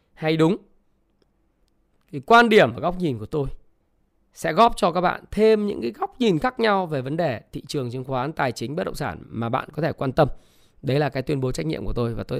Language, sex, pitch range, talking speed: Vietnamese, male, 140-205 Hz, 245 wpm